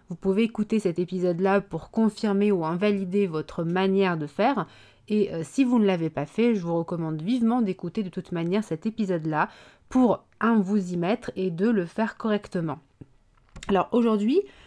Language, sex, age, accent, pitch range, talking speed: French, female, 30-49, French, 175-230 Hz, 175 wpm